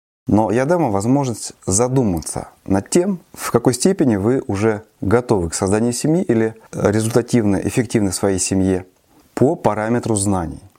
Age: 30-49